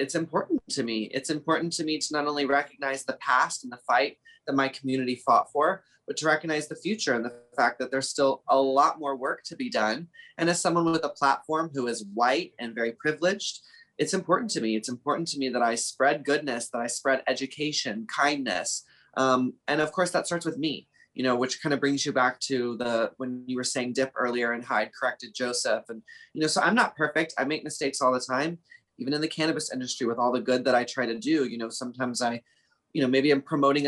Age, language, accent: 20-39, English, American